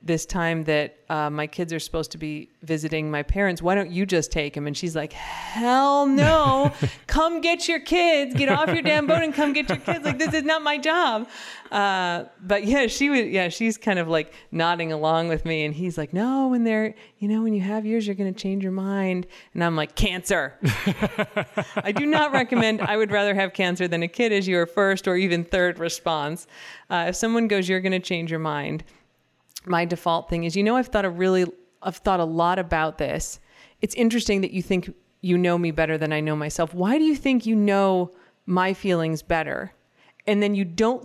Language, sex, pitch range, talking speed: English, female, 170-225 Hz, 220 wpm